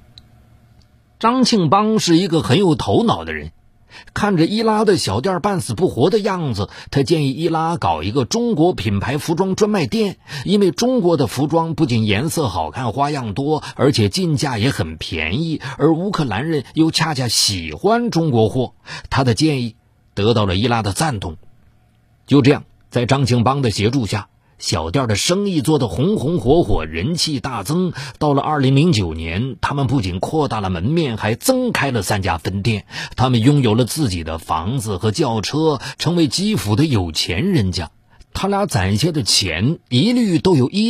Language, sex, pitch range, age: Chinese, male, 110-160 Hz, 50-69